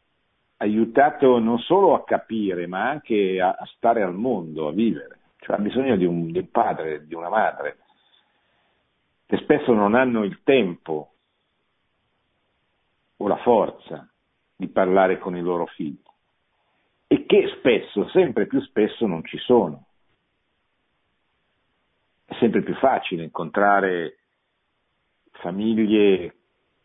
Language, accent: Italian, native